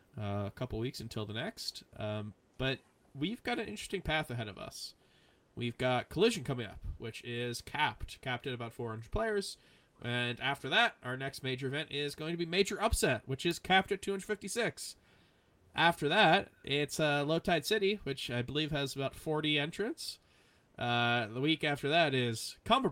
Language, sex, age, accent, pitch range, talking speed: English, male, 20-39, American, 120-165 Hz, 185 wpm